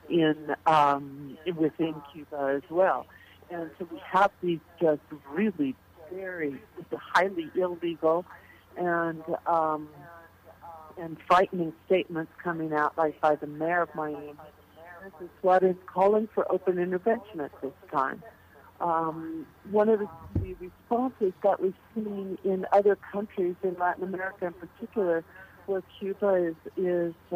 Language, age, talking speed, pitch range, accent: English, 60-79, 130 wpm, 160-185 Hz, American